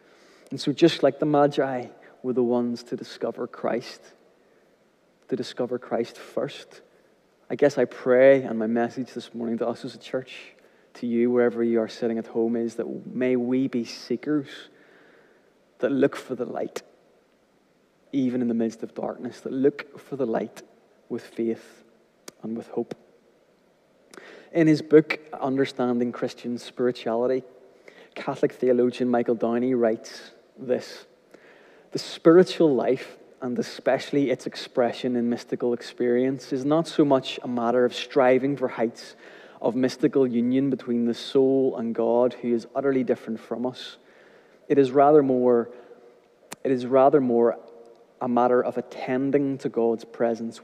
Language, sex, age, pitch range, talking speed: English, male, 20-39, 115-135 Hz, 150 wpm